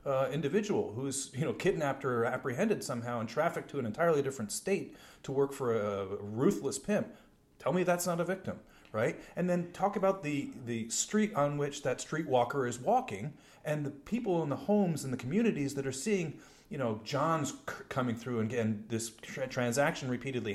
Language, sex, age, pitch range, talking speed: English, male, 30-49, 115-160 Hz, 200 wpm